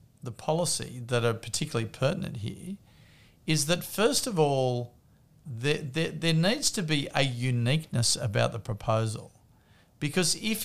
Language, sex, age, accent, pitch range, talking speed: English, male, 50-69, Australian, 115-150 Hz, 140 wpm